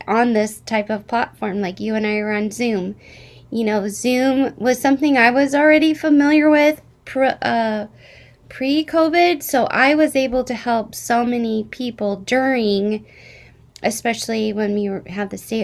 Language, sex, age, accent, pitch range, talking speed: English, female, 20-39, American, 215-265 Hz, 155 wpm